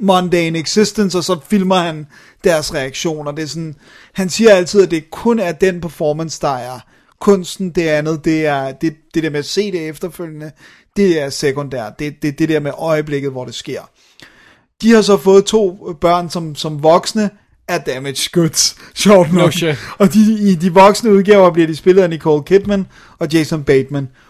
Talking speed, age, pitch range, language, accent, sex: 190 wpm, 30-49, 145-180 Hz, Danish, native, male